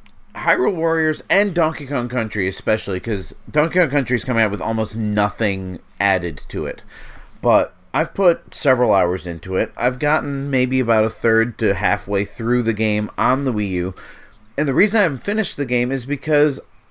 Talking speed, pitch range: 185 wpm, 100-130 Hz